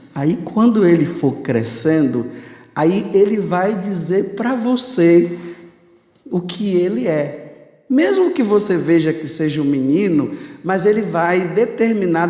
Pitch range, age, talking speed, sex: 170-230 Hz, 50-69, 130 wpm, male